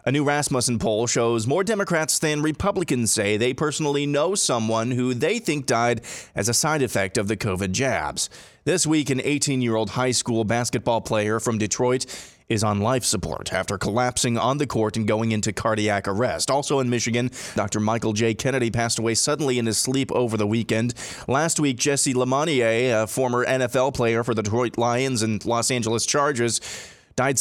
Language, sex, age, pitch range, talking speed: English, male, 30-49, 115-145 Hz, 180 wpm